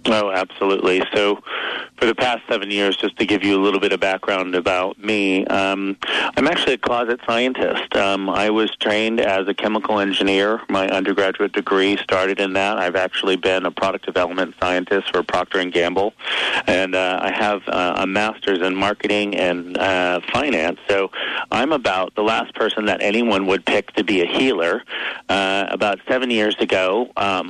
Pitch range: 95-110 Hz